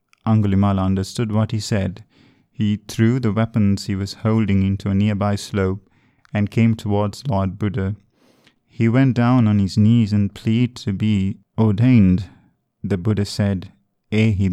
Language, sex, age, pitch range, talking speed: English, male, 20-39, 100-115 Hz, 150 wpm